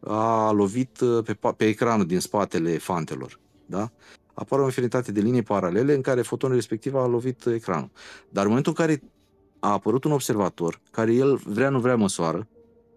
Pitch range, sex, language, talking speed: 100-135 Hz, male, Romanian, 170 wpm